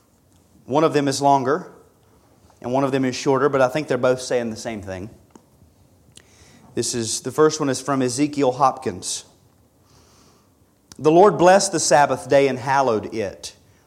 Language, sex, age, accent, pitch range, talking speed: English, male, 40-59, American, 125-180 Hz, 165 wpm